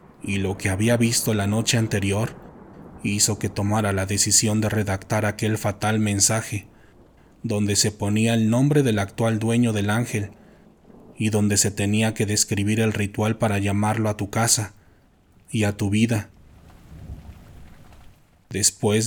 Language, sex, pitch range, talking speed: Spanish, male, 100-115 Hz, 145 wpm